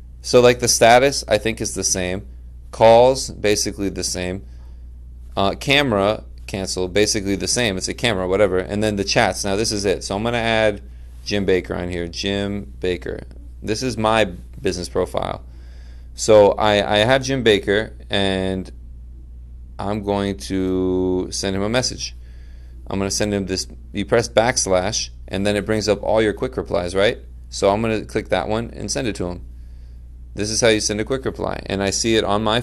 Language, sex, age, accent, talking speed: English, male, 30-49, American, 195 wpm